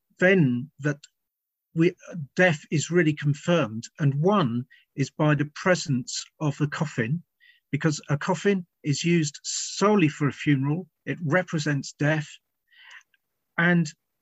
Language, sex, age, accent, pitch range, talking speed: English, male, 40-59, British, 140-175 Hz, 120 wpm